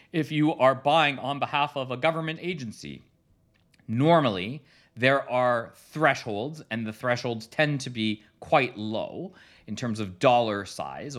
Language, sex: English, male